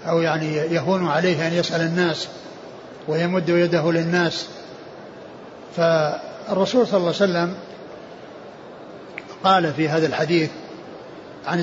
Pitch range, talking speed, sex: 165-185 Hz, 105 wpm, male